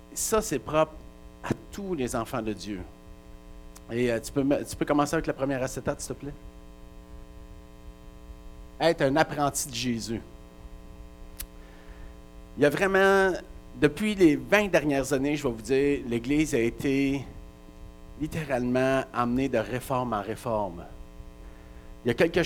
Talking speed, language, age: 140 wpm, French, 50-69